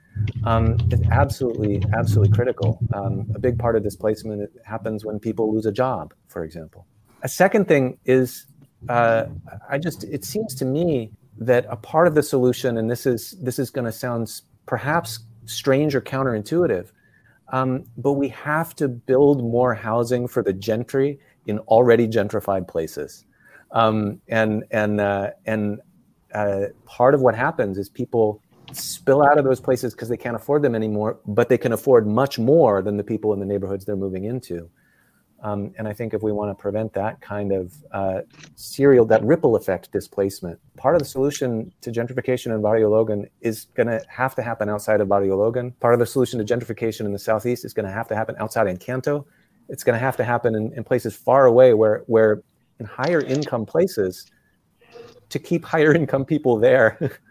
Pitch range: 105-130 Hz